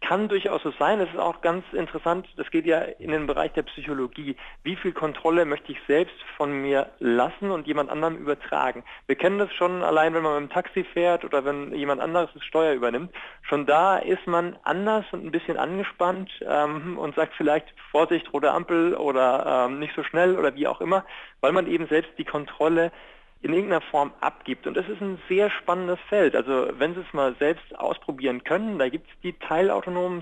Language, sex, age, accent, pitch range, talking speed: German, male, 40-59, German, 145-180 Hz, 205 wpm